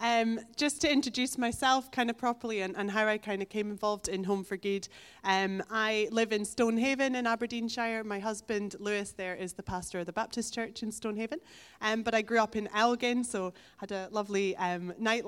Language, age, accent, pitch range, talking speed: English, 20-39, British, 195-235 Hz, 210 wpm